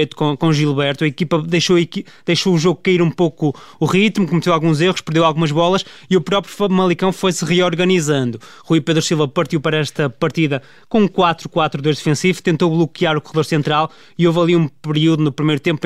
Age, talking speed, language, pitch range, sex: 20-39, 185 wpm, Portuguese, 150-175 Hz, male